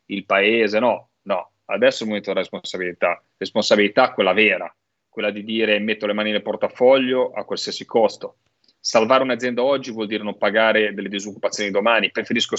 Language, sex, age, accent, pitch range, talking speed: Italian, male, 30-49, native, 105-130 Hz, 165 wpm